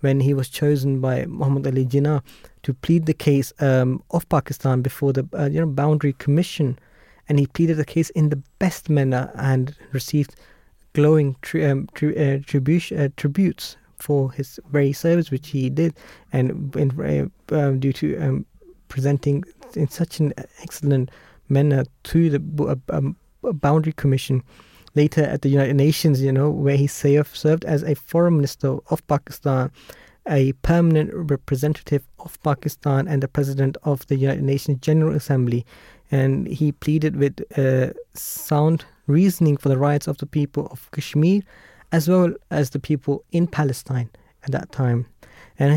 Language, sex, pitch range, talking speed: English, male, 135-155 Hz, 165 wpm